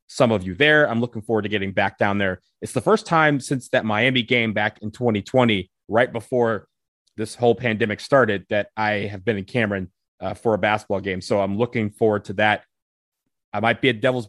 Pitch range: 100-130 Hz